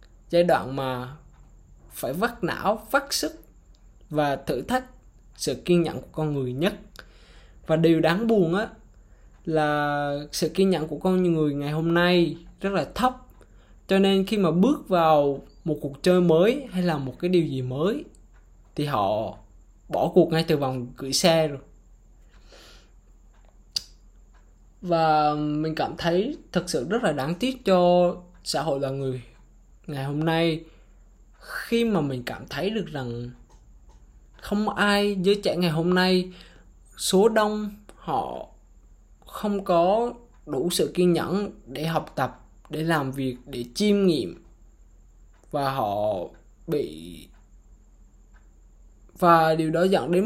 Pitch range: 140-190 Hz